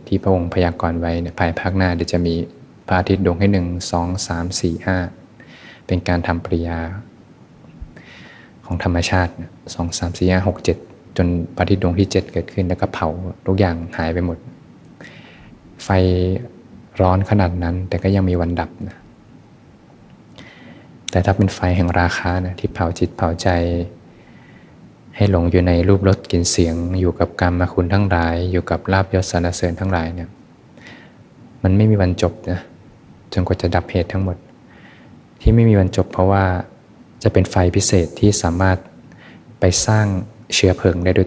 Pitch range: 85-95 Hz